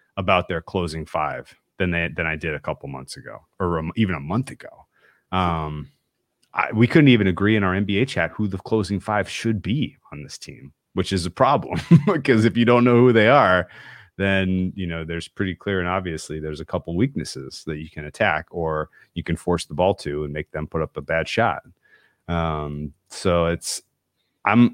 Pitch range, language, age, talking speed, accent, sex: 80-100 Hz, English, 30-49, 205 wpm, American, male